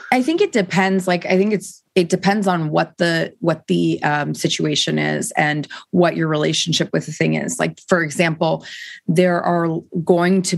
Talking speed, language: 185 wpm, English